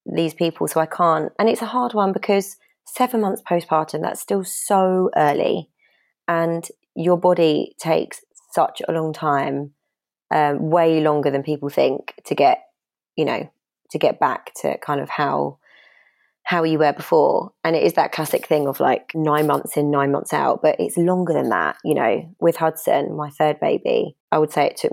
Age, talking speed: 20-39, 190 wpm